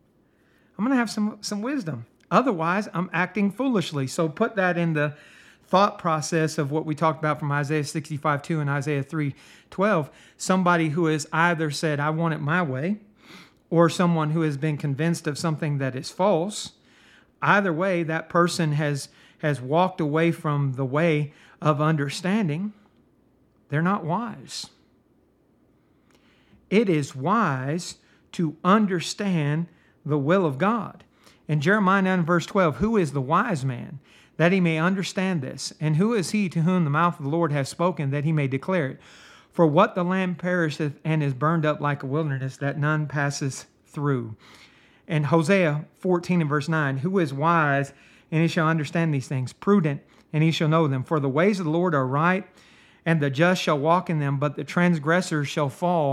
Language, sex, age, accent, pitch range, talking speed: English, male, 40-59, American, 150-180 Hz, 175 wpm